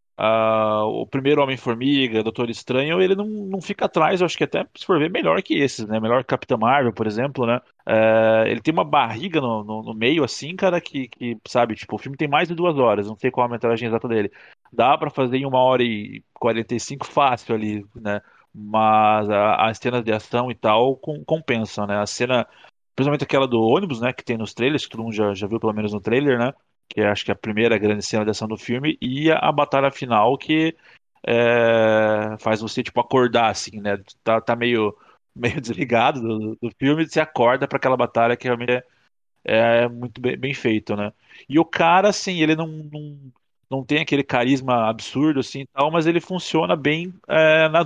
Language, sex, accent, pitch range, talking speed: Portuguese, male, Brazilian, 110-145 Hz, 205 wpm